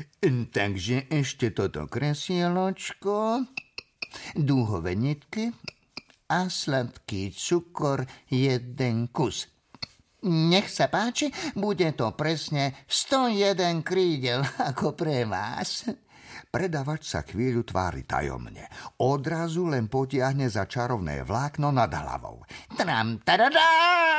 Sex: male